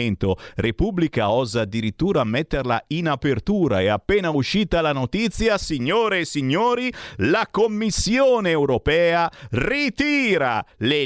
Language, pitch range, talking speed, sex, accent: Italian, 150-235 Hz, 105 wpm, male, native